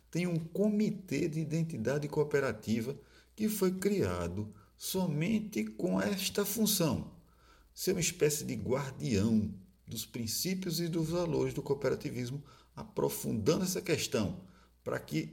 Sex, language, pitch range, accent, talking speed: male, Portuguese, 95-160 Hz, Brazilian, 115 wpm